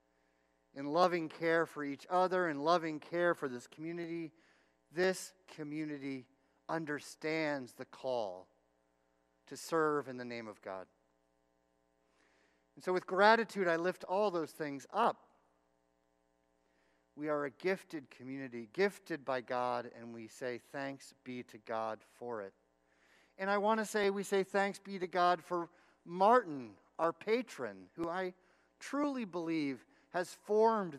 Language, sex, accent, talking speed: English, male, American, 140 wpm